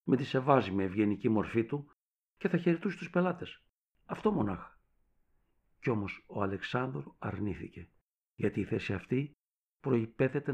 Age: 60-79